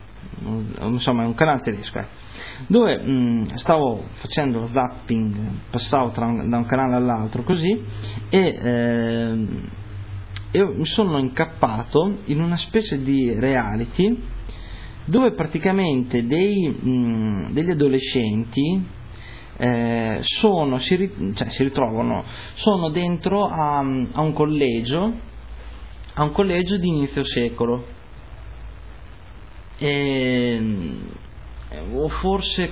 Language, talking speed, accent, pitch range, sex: Italian, 105 wpm, native, 115-150 Hz, male